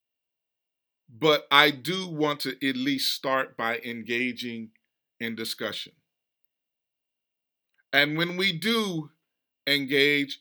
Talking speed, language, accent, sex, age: 100 wpm, English, American, male, 40-59